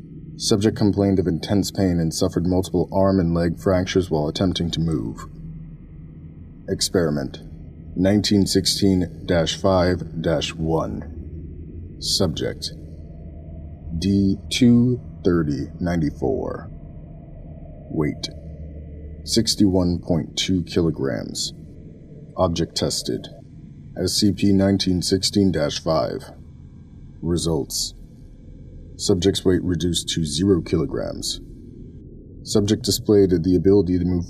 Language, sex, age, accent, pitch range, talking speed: English, male, 30-49, American, 80-100 Hz, 70 wpm